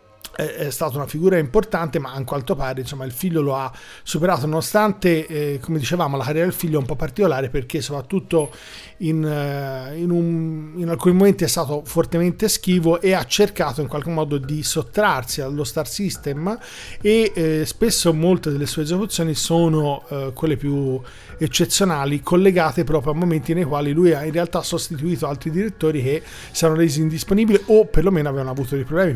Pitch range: 145-180 Hz